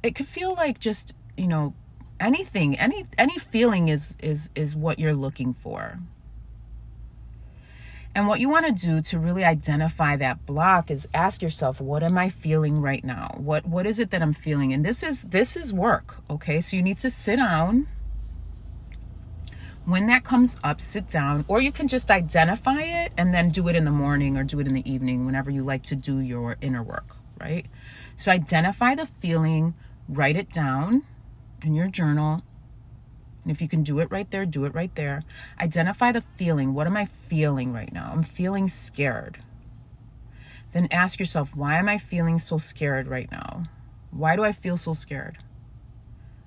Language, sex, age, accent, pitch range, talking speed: English, female, 30-49, American, 130-180 Hz, 185 wpm